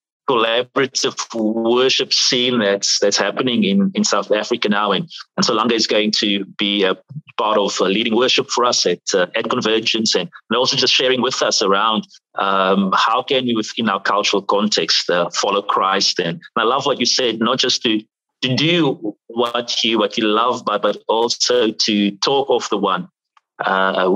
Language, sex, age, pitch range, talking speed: English, male, 30-49, 105-150 Hz, 185 wpm